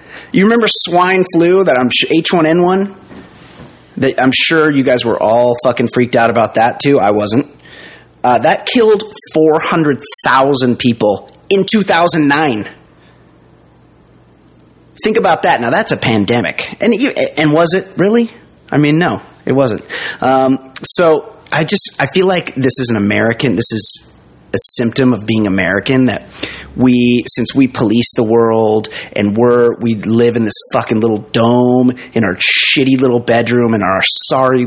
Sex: male